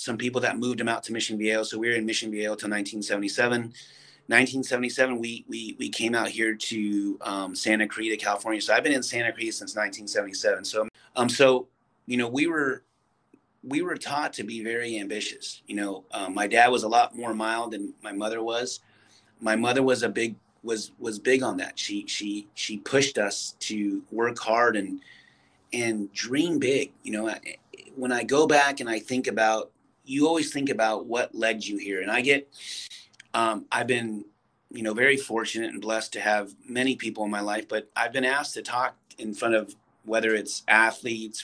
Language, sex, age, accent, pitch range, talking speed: English, male, 30-49, American, 110-130 Hz, 195 wpm